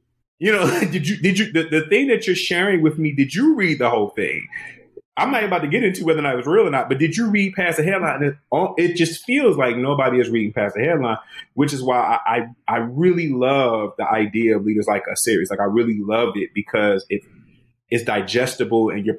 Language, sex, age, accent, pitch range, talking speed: English, male, 30-49, American, 115-170 Hz, 250 wpm